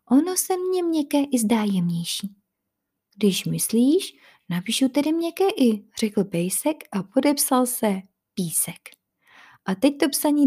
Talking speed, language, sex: 130 wpm, Czech, female